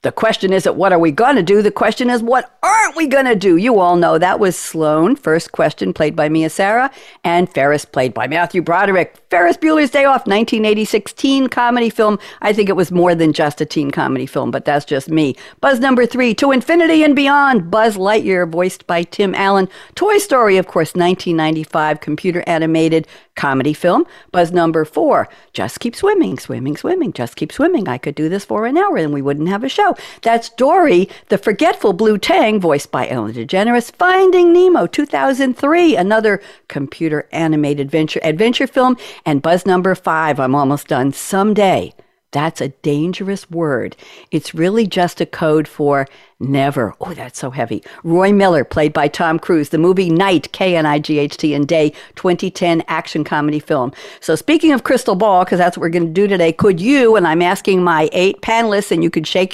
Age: 60-79